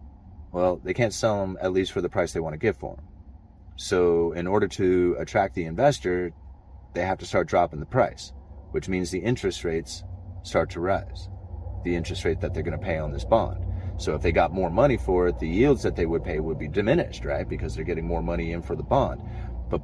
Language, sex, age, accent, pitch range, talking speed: English, male, 30-49, American, 75-90 Hz, 235 wpm